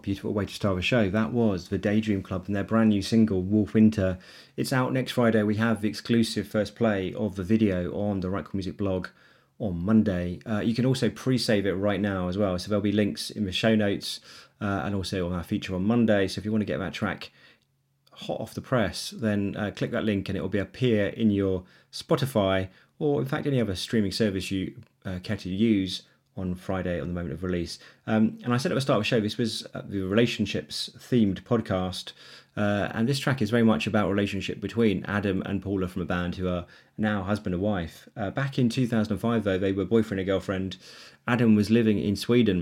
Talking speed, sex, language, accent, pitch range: 230 wpm, male, English, British, 95-115 Hz